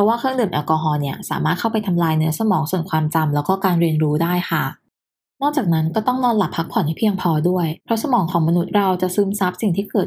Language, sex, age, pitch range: Thai, female, 20-39, 165-205 Hz